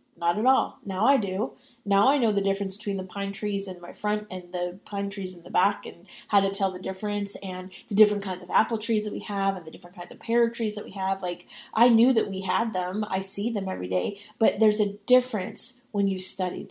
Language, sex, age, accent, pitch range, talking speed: English, female, 20-39, American, 190-230 Hz, 250 wpm